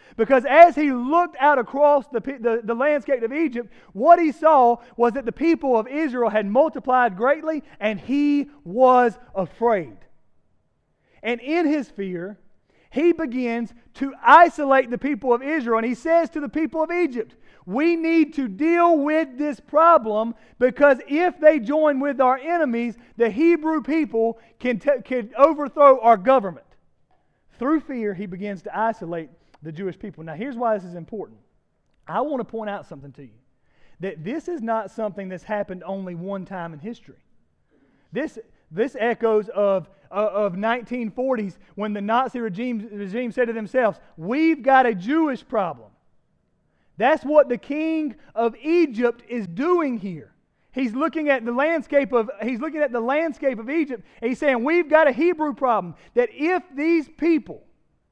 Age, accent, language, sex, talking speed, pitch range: 30-49, American, English, male, 165 wpm, 210-290 Hz